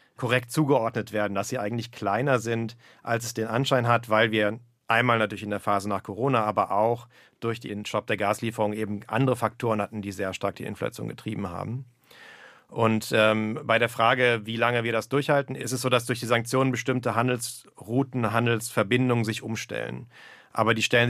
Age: 40-59